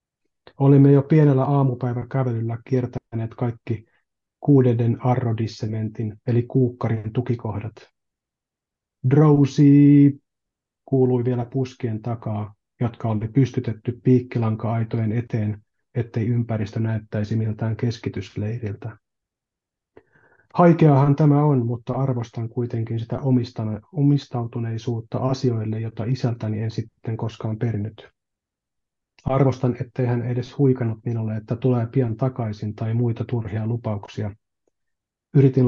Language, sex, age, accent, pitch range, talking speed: Finnish, male, 30-49, native, 110-130 Hz, 100 wpm